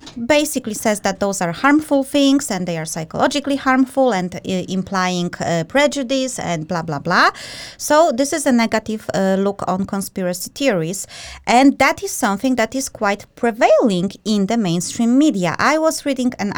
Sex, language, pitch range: female, English, 190-275 Hz